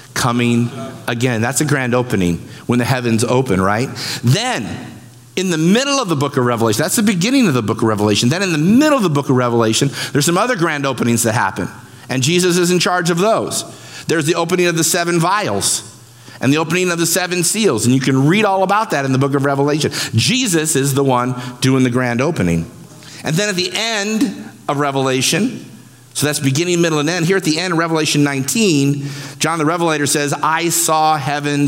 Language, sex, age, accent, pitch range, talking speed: English, male, 50-69, American, 120-165 Hz, 210 wpm